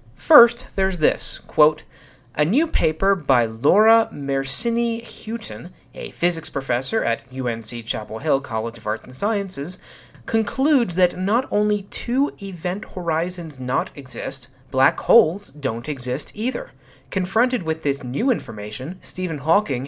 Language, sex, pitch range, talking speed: English, male, 140-210 Hz, 135 wpm